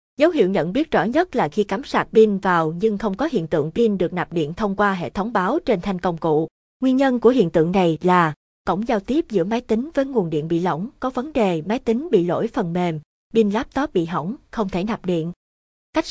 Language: Vietnamese